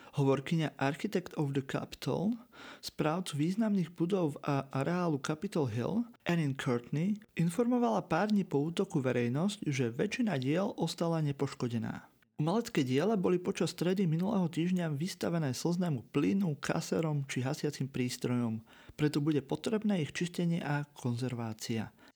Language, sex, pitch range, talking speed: Slovak, male, 130-175 Hz, 125 wpm